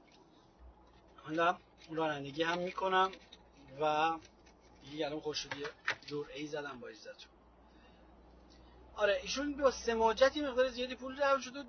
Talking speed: 120 wpm